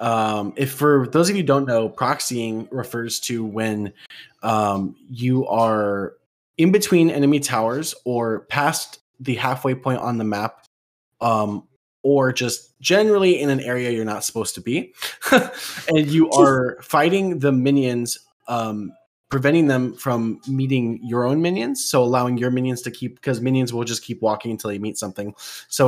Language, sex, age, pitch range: English, male, 20-39, 110-135 Hz